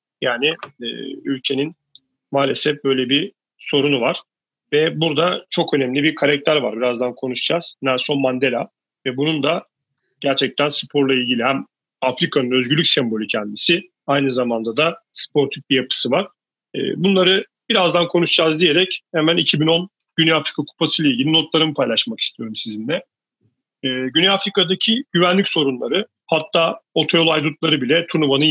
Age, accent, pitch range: 40-59, native, 135-175 Hz